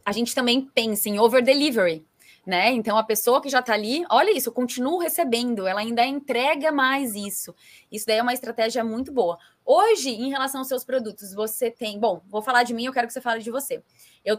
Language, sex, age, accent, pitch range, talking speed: Portuguese, female, 20-39, Brazilian, 215-270 Hz, 220 wpm